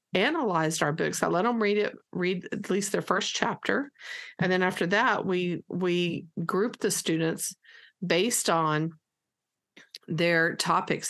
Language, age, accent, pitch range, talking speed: English, 50-69, American, 160-195 Hz, 145 wpm